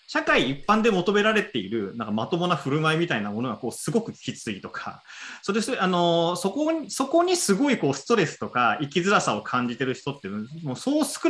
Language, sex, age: Japanese, male, 30-49